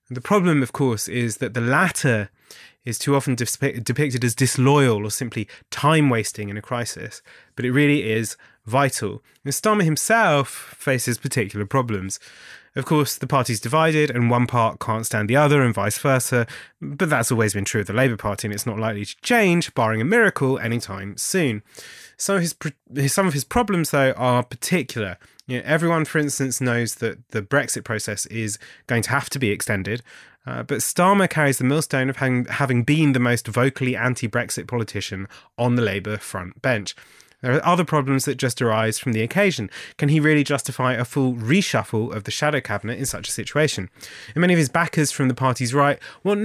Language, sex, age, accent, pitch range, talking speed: English, male, 20-39, British, 110-145 Hz, 190 wpm